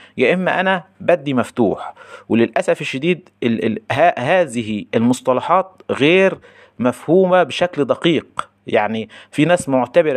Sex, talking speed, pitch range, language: male, 100 wpm, 115-170 Hz, Arabic